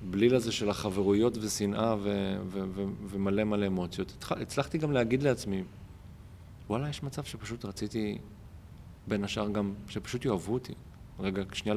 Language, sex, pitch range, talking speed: Hebrew, male, 95-115 Hz, 145 wpm